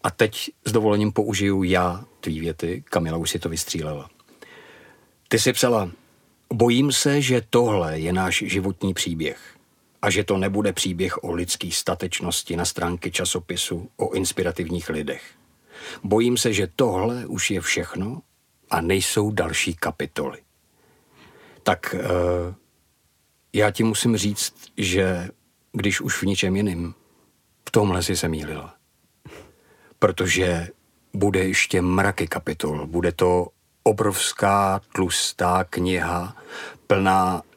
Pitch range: 85-105 Hz